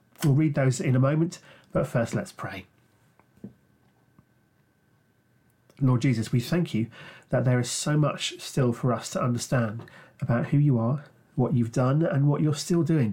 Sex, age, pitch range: male, 40-59, 120-155 Hz